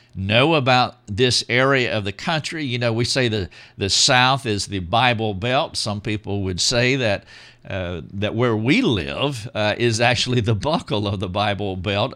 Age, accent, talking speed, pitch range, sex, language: 50-69, American, 185 wpm, 100-125 Hz, male, English